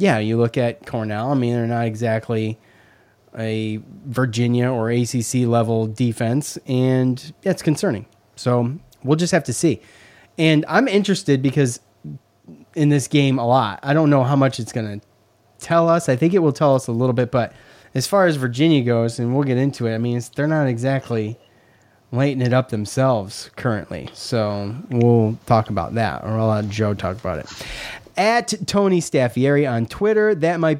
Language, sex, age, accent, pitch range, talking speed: English, male, 30-49, American, 115-140 Hz, 185 wpm